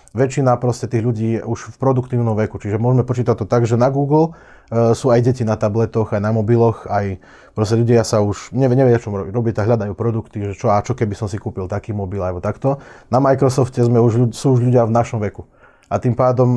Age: 30-49